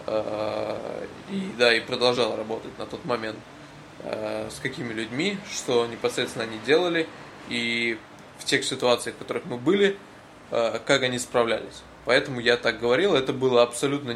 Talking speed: 140 wpm